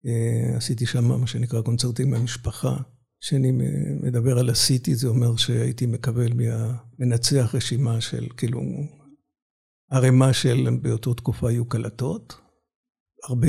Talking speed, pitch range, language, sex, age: 110 wpm, 120-145 Hz, Hebrew, male, 60-79